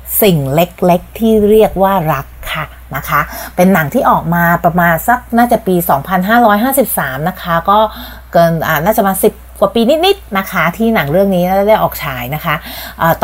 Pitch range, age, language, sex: 170-215 Hz, 30-49, Thai, female